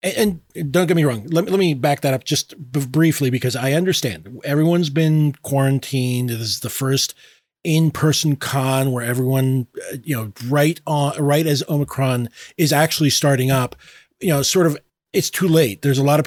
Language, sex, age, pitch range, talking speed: English, male, 30-49, 120-150 Hz, 175 wpm